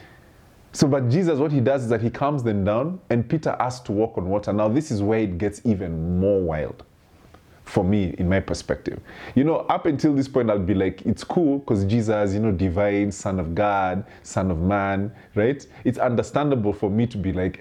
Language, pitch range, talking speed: English, 95-125 Hz, 215 wpm